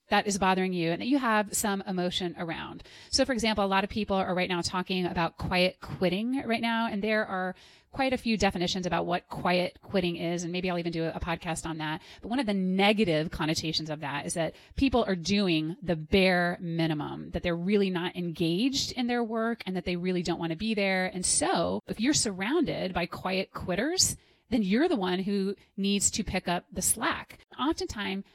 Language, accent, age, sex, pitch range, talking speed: English, American, 30-49, female, 180-225 Hz, 215 wpm